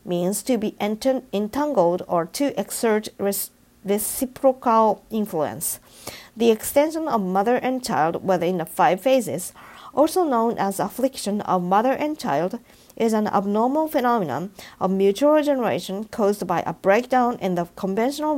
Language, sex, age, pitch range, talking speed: English, female, 50-69, 185-255 Hz, 135 wpm